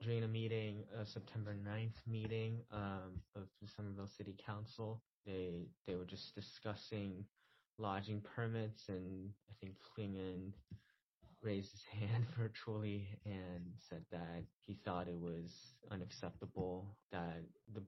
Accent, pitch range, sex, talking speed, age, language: American, 95-110 Hz, male, 130 wpm, 20-39, English